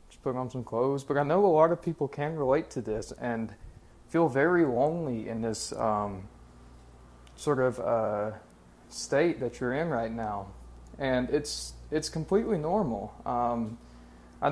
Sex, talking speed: male, 160 wpm